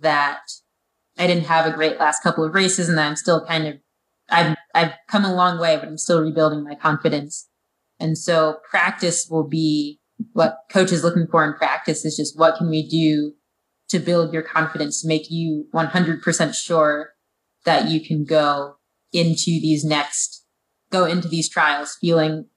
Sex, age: female, 20-39